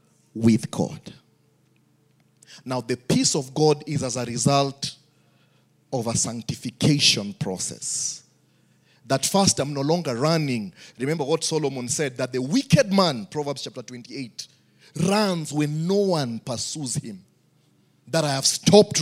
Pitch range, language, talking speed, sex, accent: 110-150 Hz, English, 135 wpm, male, South African